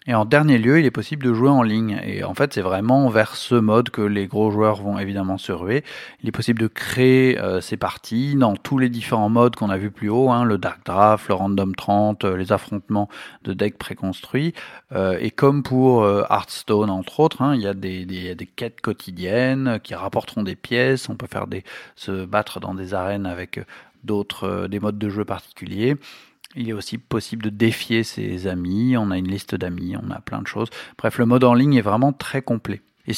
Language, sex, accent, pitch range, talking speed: French, male, French, 95-130 Hz, 225 wpm